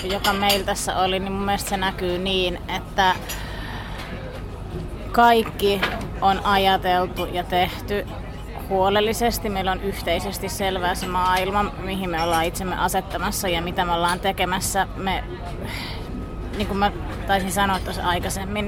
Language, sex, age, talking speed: Finnish, female, 30-49, 130 wpm